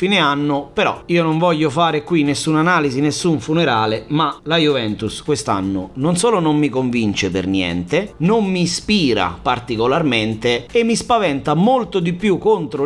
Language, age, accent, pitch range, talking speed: Italian, 30-49, native, 145-195 Hz, 160 wpm